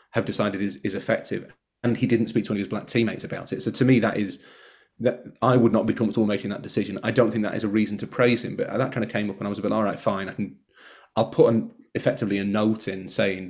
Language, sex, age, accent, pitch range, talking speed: English, male, 30-49, British, 105-125 Hz, 285 wpm